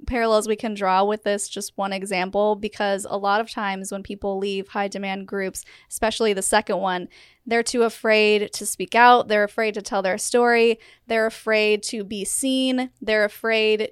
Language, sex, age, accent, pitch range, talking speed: English, female, 10-29, American, 210-245 Hz, 185 wpm